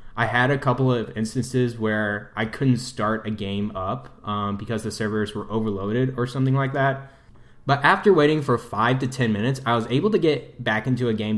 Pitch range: 110-135 Hz